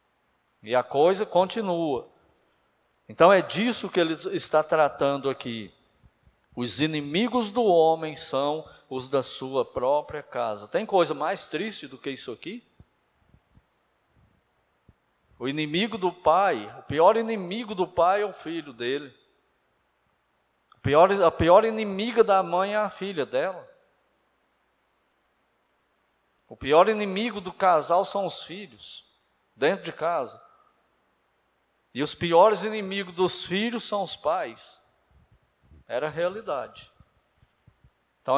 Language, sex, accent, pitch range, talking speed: Portuguese, male, Brazilian, 150-210 Hz, 120 wpm